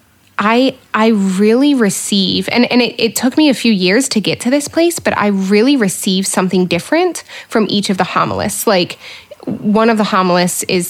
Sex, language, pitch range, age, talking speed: female, English, 185-215 Hz, 20-39, 195 wpm